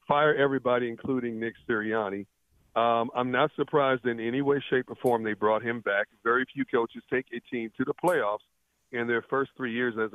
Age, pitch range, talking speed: 50-69, 115-135 Hz, 200 wpm